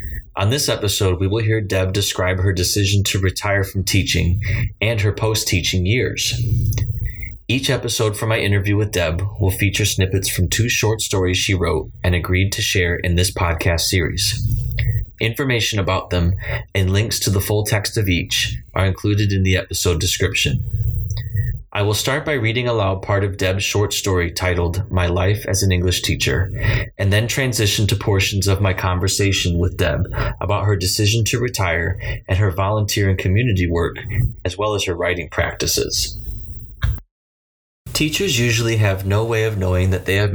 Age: 20-39